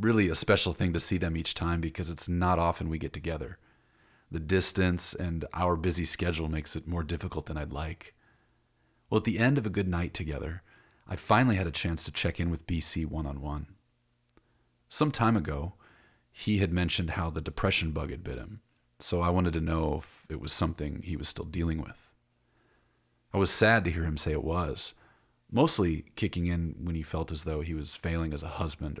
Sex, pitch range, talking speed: male, 80-95 Hz, 205 wpm